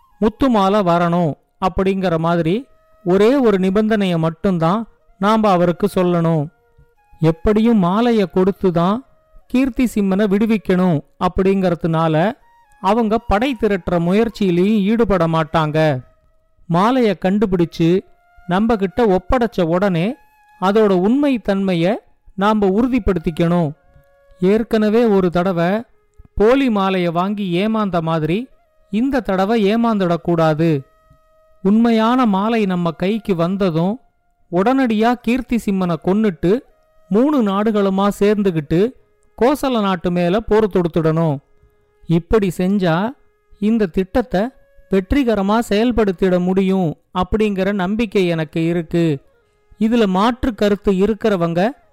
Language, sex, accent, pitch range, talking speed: Tamil, male, native, 175-225 Hz, 90 wpm